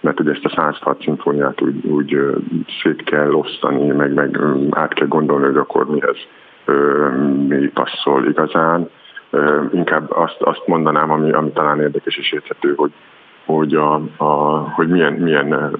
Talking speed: 145 wpm